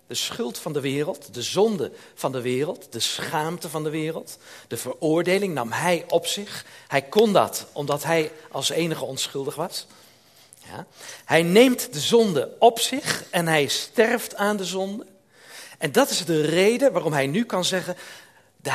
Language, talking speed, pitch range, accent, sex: Dutch, 170 wpm, 150-215 Hz, Dutch, male